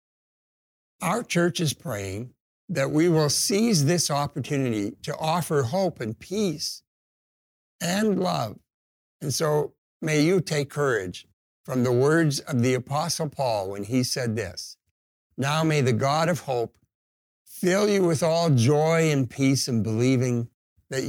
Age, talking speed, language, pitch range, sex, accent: 60-79, 140 wpm, English, 115-160 Hz, male, American